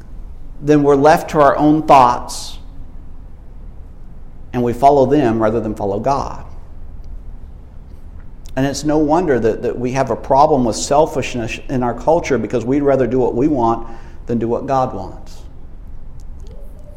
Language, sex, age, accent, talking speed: English, male, 50-69, American, 150 wpm